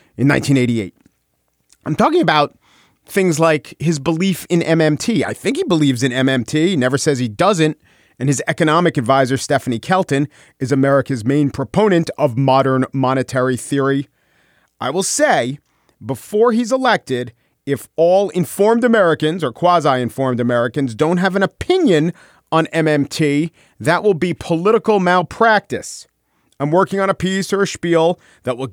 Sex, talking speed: male, 145 wpm